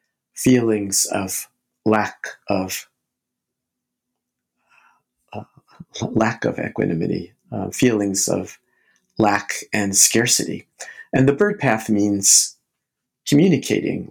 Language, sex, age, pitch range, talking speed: English, male, 50-69, 100-115 Hz, 85 wpm